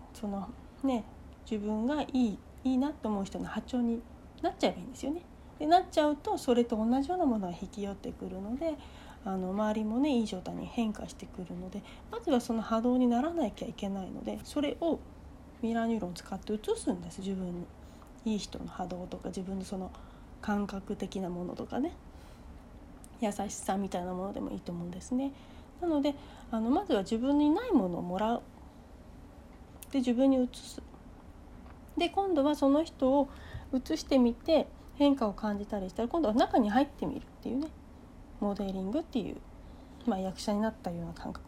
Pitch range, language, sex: 200-280 Hz, Japanese, female